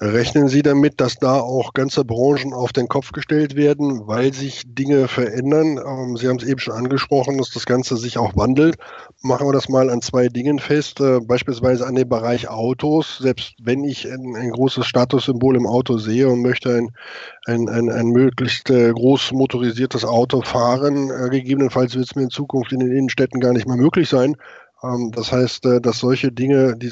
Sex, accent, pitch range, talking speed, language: male, German, 120-140 Hz, 185 wpm, German